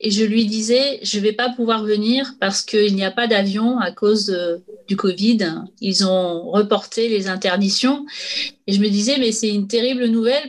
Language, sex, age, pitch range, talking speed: French, female, 30-49, 210-280 Hz, 200 wpm